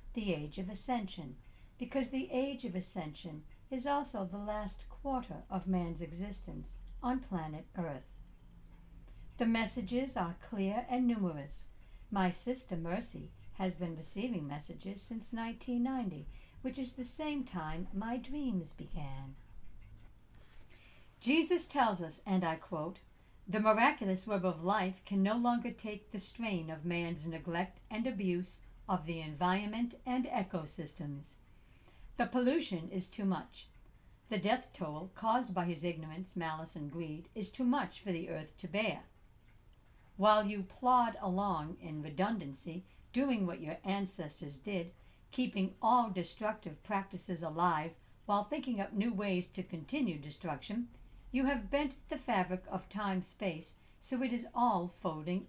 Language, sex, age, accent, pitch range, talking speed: English, female, 60-79, American, 170-235 Hz, 140 wpm